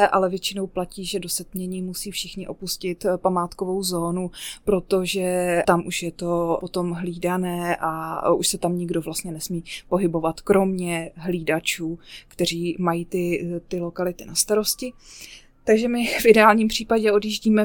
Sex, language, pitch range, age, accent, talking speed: female, Czech, 175-200 Hz, 20-39, native, 145 wpm